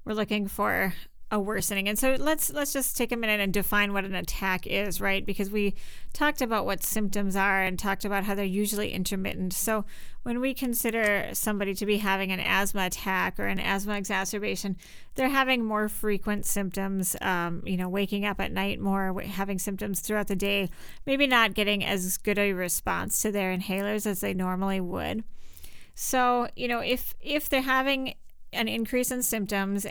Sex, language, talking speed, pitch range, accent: female, English, 185 wpm, 195-215 Hz, American